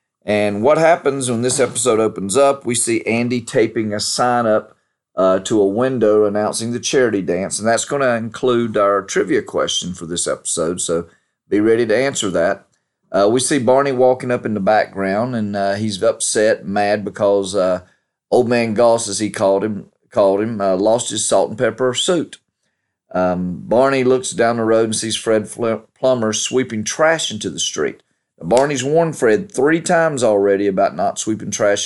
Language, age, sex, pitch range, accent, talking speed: English, 40-59, male, 100-120 Hz, American, 180 wpm